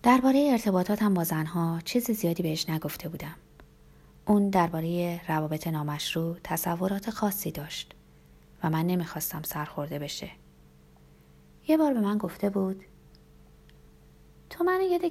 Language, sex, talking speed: Persian, female, 125 wpm